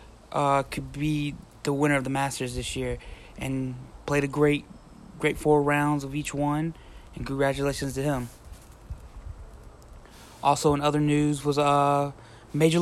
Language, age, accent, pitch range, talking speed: English, 20-39, American, 135-150 Hz, 145 wpm